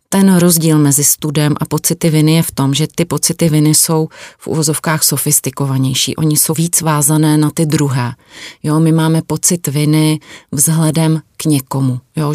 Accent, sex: native, female